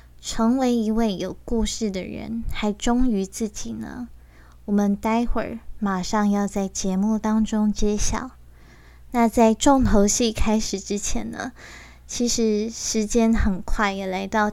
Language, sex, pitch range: Chinese, female, 195-230 Hz